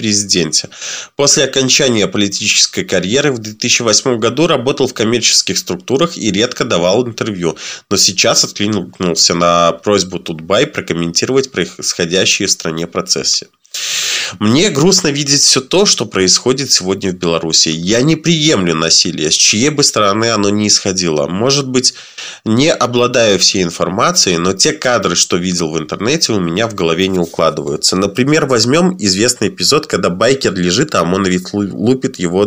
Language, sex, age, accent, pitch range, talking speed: Russian, male, 20-39, native, 90-125 Hz, 145 wpm